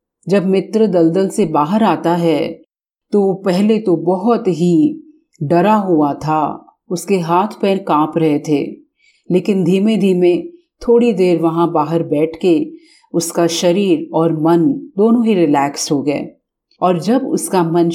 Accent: native